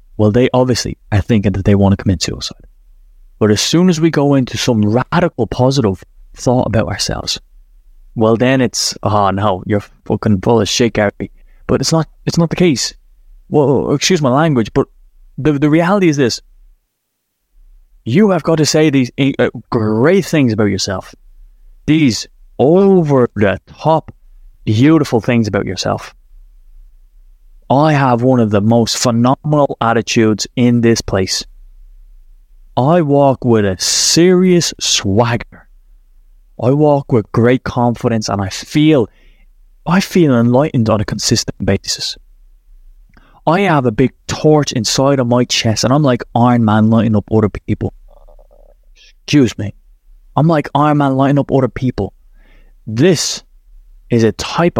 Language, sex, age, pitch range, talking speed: English, male, 20-39, 100-140 Hz, 150 wpm